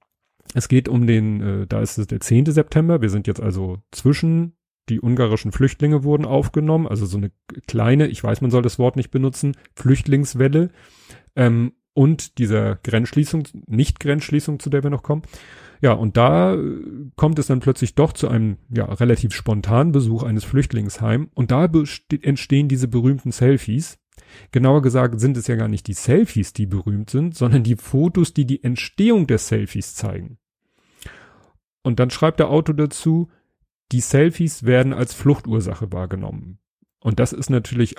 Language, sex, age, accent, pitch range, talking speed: German, male, 30-49, German, 110-140 Hz, 165 wpm